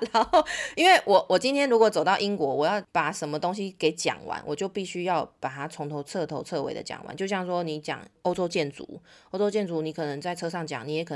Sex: female